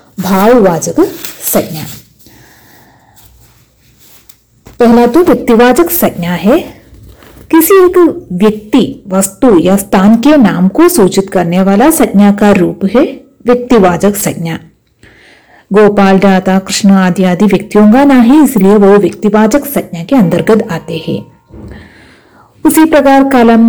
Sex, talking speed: female, 110 wpm